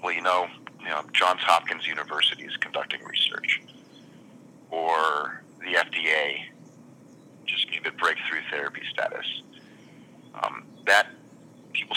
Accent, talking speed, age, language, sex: American, 90 wpm, 30-49, English, male